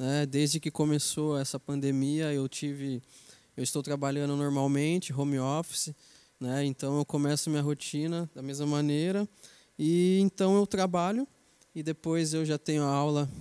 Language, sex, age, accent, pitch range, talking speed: Portuguese, male, 20-39, Brazilian, 140-170 Hz, 150 wpm